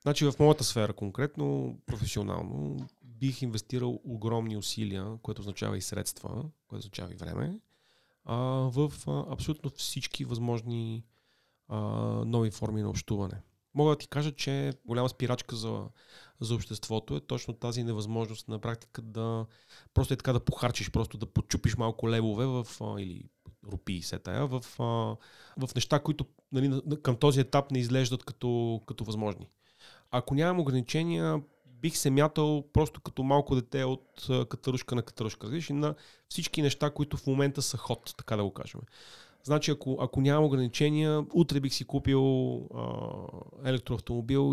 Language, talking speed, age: Bulgarian, 145 wpm, 30-49